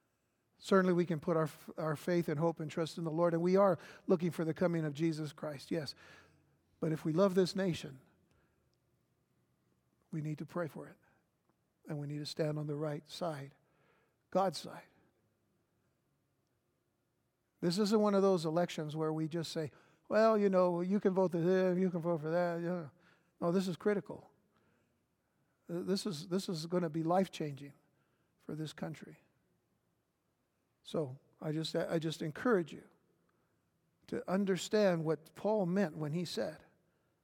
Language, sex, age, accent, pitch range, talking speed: English, male, 60-79, American, 155-180 Hz, 165 wpm